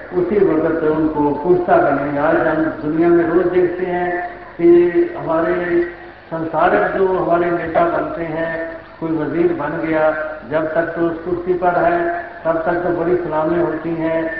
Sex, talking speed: male, 170 wpm